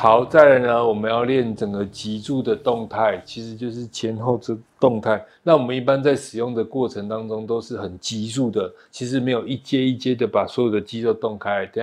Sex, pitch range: male, 110-130 Hz